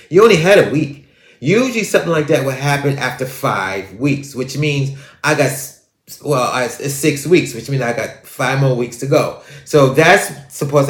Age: 30-49